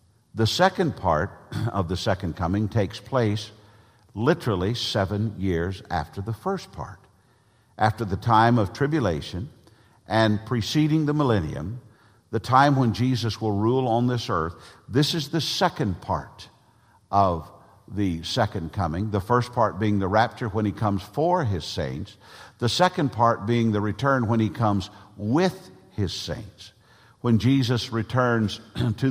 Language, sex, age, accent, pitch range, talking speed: English, male, 50-69, American, 100-125 Hz, 145 wpm